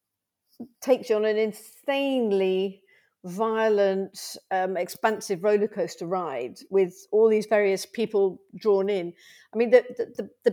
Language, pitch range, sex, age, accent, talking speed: English, 190-220 Hz, female, 50-69, British, 135 wpm